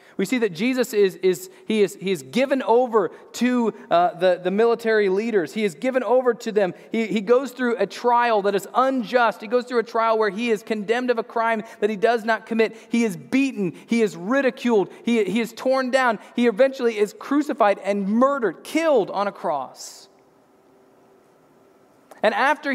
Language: English